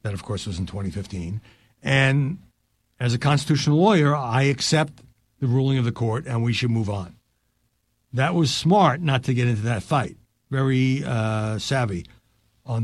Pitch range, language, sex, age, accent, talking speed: 115-150 Hz, English, male, 60-79, American, 170 wpm